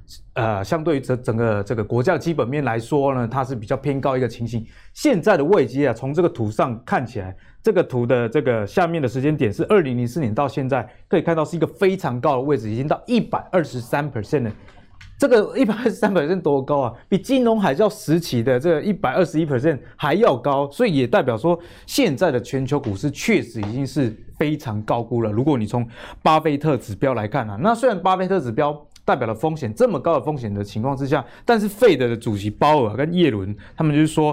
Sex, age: male, 20-39